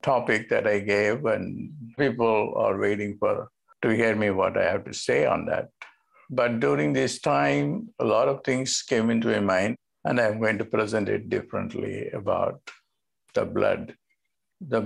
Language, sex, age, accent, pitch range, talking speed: English, male, 50-69, Indian, 100-125 Hz, 170 wpm